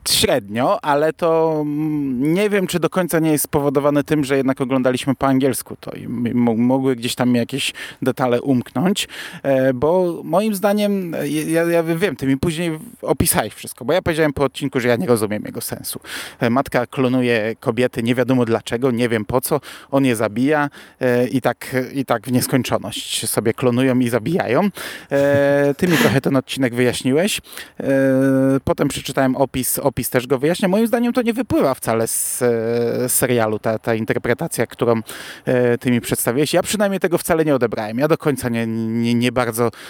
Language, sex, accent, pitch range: Polish, male, native, 125-155 Hz